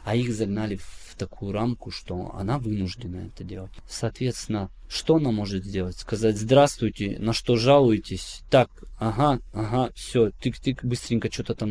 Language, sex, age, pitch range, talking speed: Russian, male, 20-39, 95-120 Hz, 150 wpm